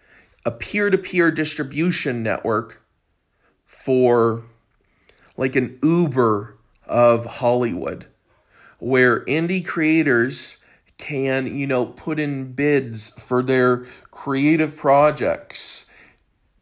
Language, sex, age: English, male, 40-59